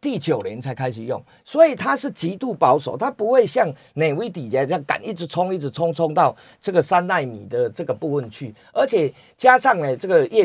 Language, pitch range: Chinese, 155-260 Hz